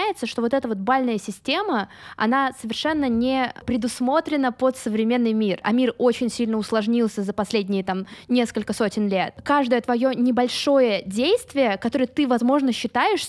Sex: female